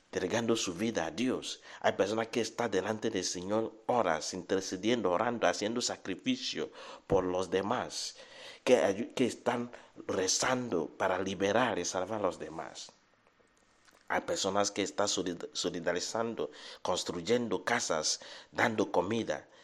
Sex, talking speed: male, 125 wpm